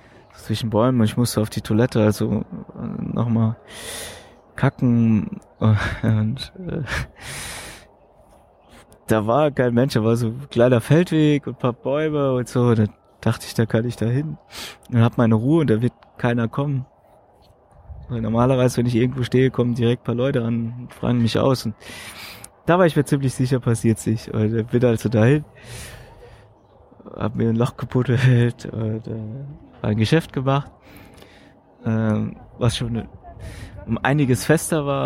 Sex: male